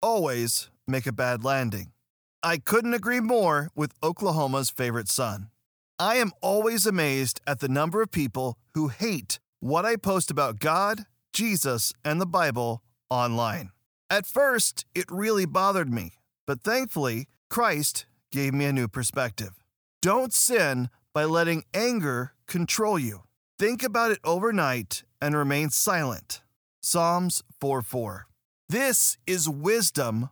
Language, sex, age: English, male, 40-59